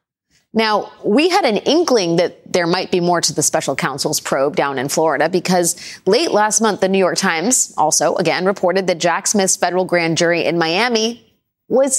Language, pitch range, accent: English, 175-225 Hz, American